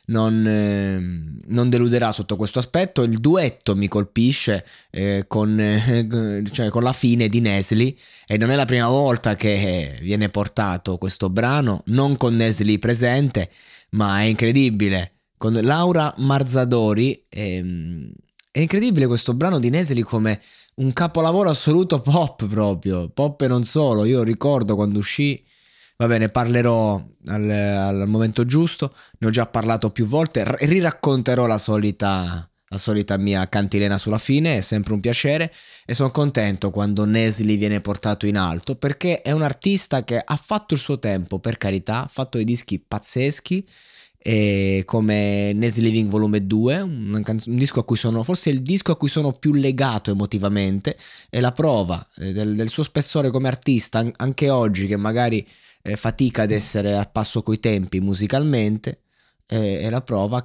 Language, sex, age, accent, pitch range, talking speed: Italian, male, 20-39, native, 105-130 Hz, 160 wpm